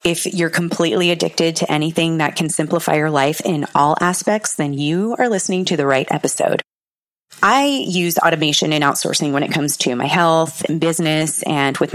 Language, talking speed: English, 185 wpm